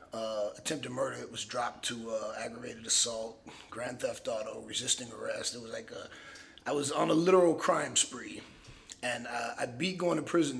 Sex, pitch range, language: male, 115-150 Hz, English